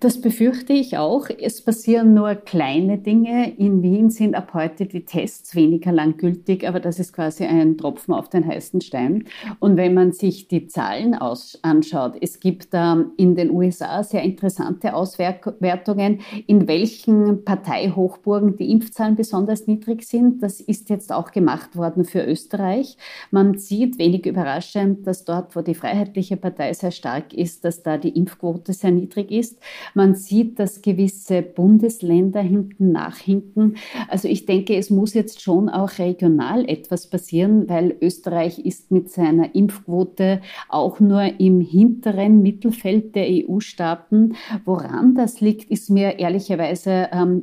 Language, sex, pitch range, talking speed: German, female, 175-210 Hz, 150 wpm